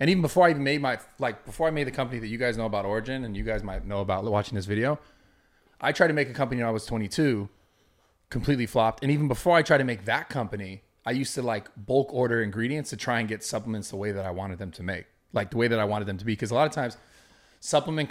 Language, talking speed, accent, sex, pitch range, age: English, 275 wpm, American, male, 110-135 Hz, 30-49